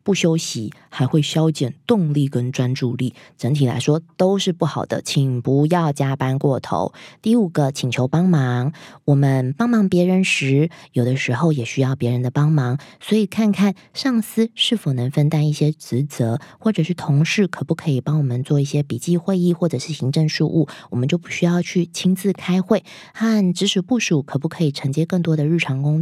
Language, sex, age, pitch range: Chinese, female, 20-39, 135-175 Hz